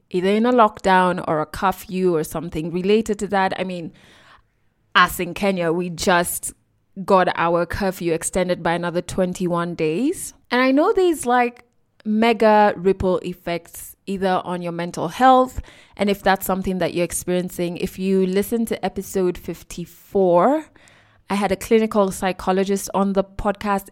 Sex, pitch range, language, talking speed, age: female, 180-220 Hz, English, 155 wpm, 20-39